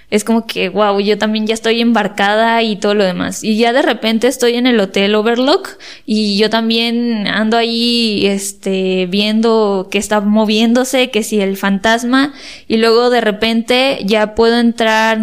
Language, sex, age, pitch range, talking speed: Spanish, female, 20-39, 210-245 Hz, 170 wpm